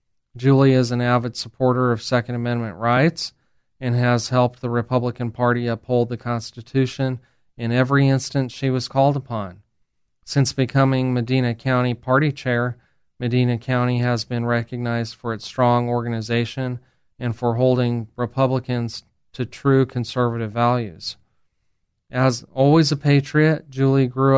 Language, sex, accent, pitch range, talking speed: English, male, American, 120-130 Hz, 135 wpm